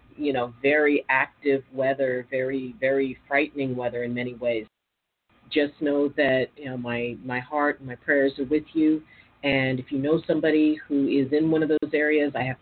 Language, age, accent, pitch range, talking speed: English, 40-59, American, 125-155 Hz, 190 wpm